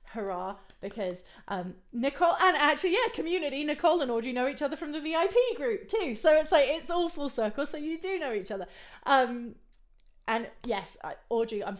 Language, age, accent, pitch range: English, 30-49, British, 195-240 Hz